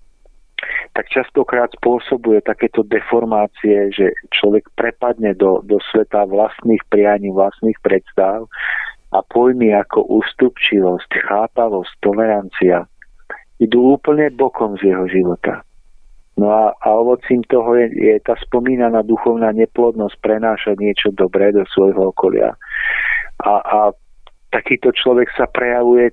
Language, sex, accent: Czech, male, native